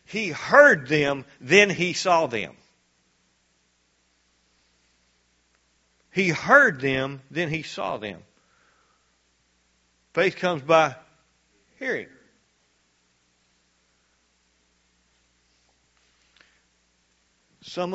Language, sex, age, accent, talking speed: English, male, 50-69, American, 65 wpm